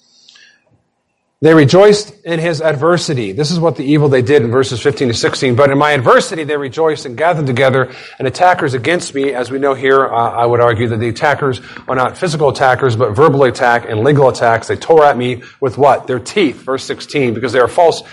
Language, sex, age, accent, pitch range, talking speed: English, male, 40-59, American, 120-160 Hz, 215 wpm